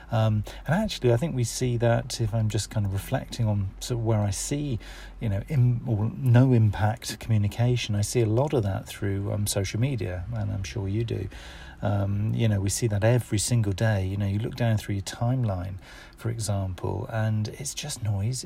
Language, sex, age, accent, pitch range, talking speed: English, male, 40-59, British, 105-125 Hz, 210 wpm